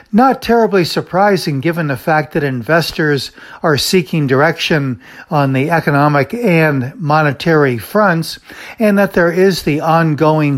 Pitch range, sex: 135-170 Hz, male